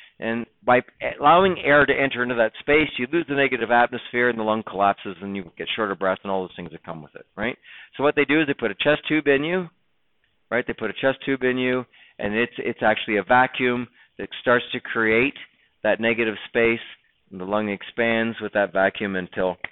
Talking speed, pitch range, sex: 220 wpm, 110-150 Hz, male